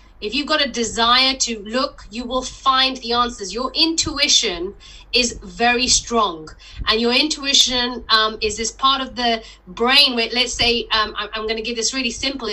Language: English